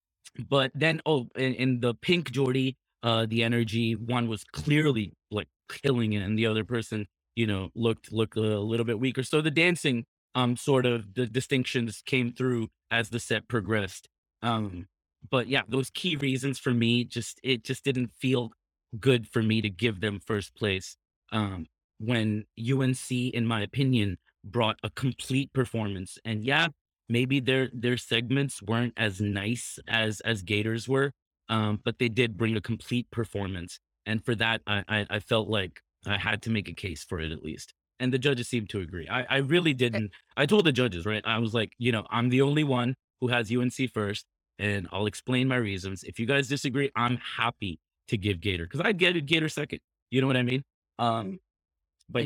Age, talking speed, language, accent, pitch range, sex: 30-49, 195 wpm, English, American, 105-130 Hz, male